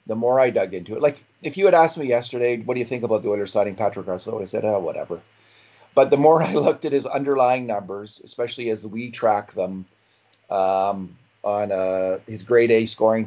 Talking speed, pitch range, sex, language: 215 wpm, 100-130 Hz, male, English